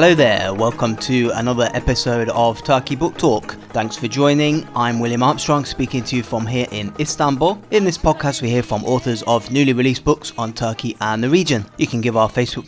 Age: 20-39